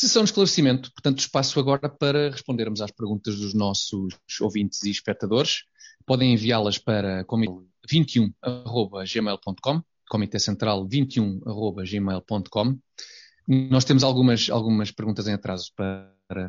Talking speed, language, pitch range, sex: 110 wpm, Portuguese, 105-140 Hz, male